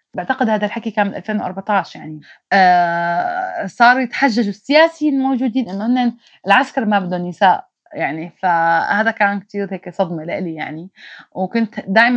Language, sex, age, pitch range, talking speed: Arabic, female, 20-39, 190-230 Hz, 140 wpm